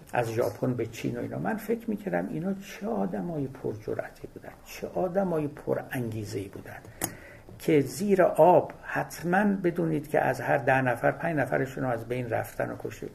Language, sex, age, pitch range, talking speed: Persian, male, 60-79, 115-165 Hz, 180 wpm